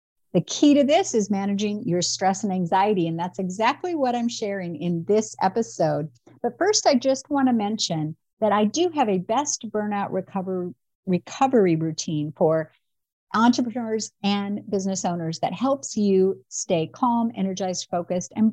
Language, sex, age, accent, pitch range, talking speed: English, female, 50-69, American, 170-240 Hz, 160 wpm